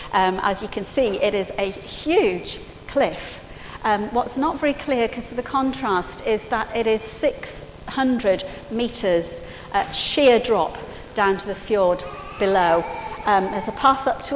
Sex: female